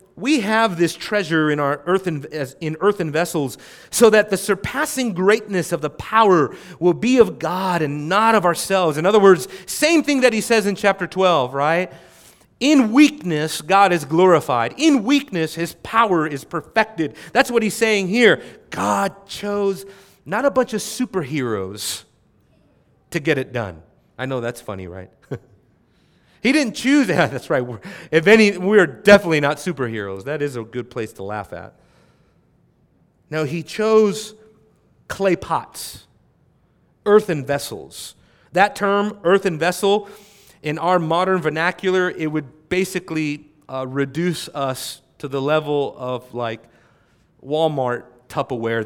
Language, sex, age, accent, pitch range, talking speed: English, male, 30-49, American, 140-205 Hz, 145 wpm